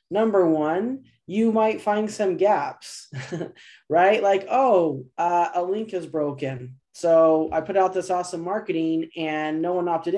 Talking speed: 155 wpm